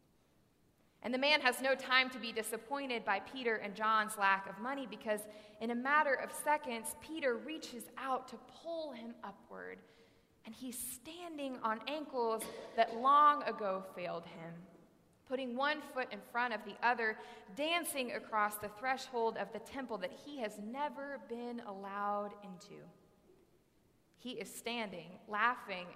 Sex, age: female, 20-39